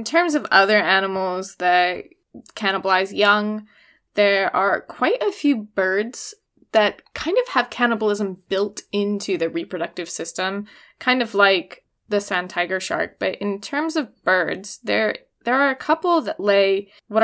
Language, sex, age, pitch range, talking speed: English, female, 20-39, 190-240 Hz, 155 wpm